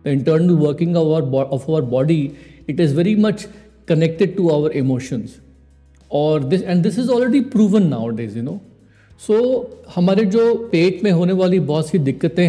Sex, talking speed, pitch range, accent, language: male, 175 wpm, 140-175 Hz, native, Hindi